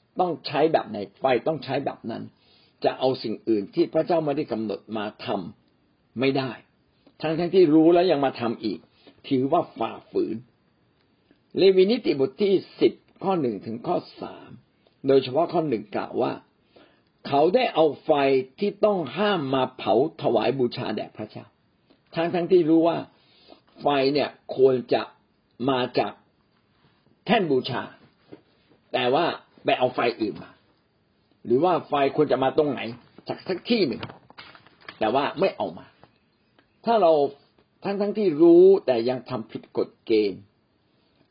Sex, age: male, 60-79